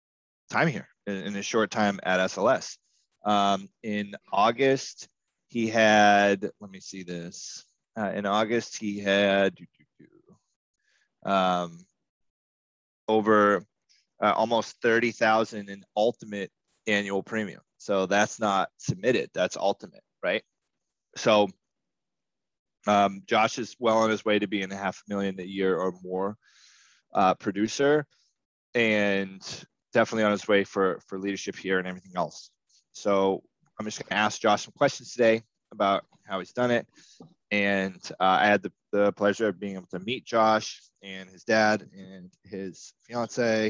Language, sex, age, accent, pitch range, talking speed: English, male, 20-39, American, 95-110 Hz, 140 wpm